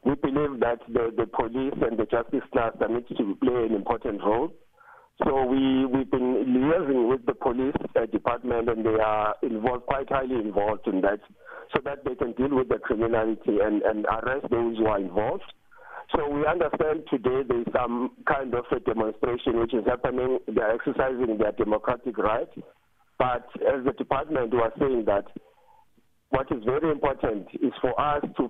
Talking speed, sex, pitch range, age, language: 175 wpm, male, 115-140 Hz, 50-69, English